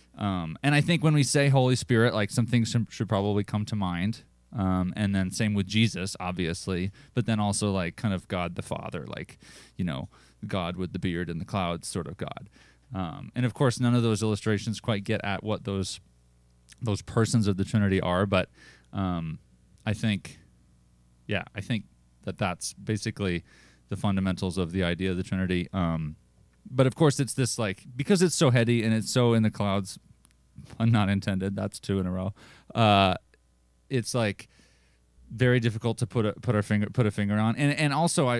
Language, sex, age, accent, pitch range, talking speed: English, male, 20-39, American, 90-115 Hz, 195 wpm